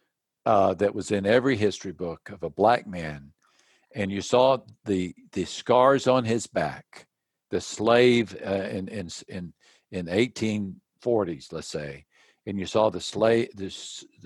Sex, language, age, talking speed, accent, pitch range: male, English, 60-79, 150 wpm, American, 95-130 Hz